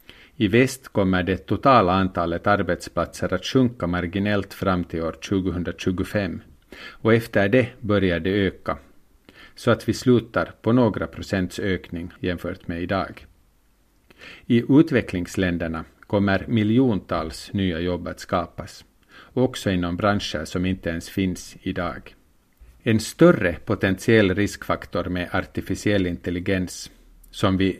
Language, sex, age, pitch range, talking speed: Swedish, male, 50-69, 90-105 Hz, 120 wpm